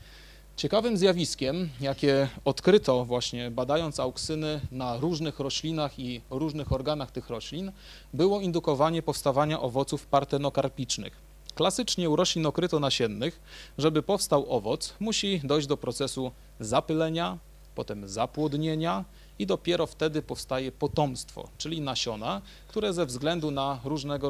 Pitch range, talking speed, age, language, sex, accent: 130-160 Hz, 115 wpm, 30-49, Polish, male, native